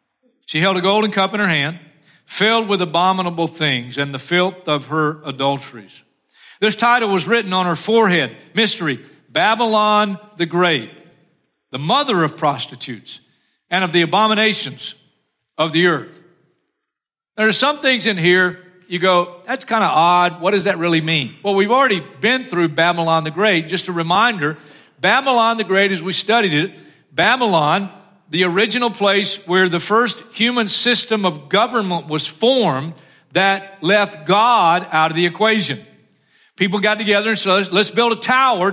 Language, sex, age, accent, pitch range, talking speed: English, male, 50-69, American, 165-210 Hz, 160 wpm